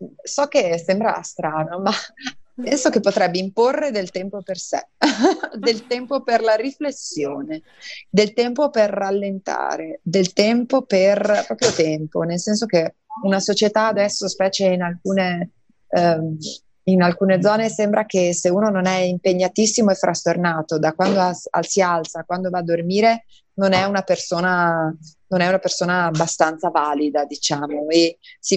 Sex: female